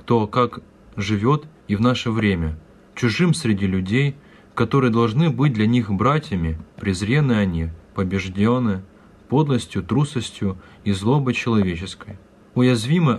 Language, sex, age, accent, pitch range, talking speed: Russian, male, 20-39, native, 100-130 Hz, 115 wpm